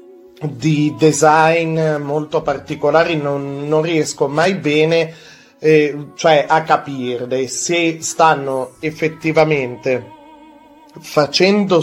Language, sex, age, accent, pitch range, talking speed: Italian, male, 30-49, native, 130-175 Hz, 85 wpm